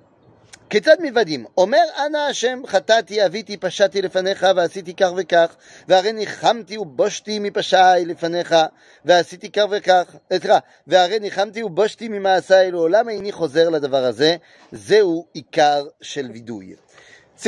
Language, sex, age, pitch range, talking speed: French, male, 30-49, 150-215 Hz, 40 wpm